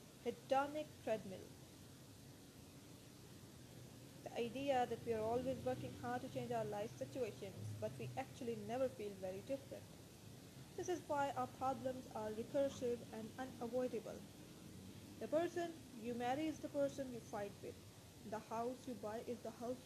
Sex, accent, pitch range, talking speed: female, Indian, 225-270 Hz, 145 wpm